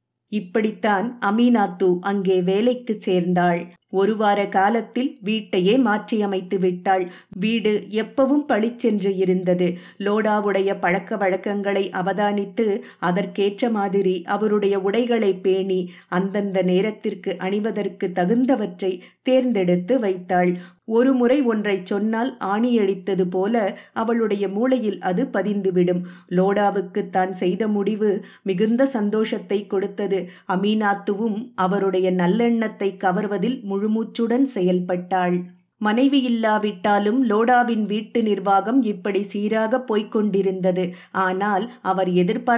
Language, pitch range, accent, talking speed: English, 190-220 Hz, Indian, 85 wpm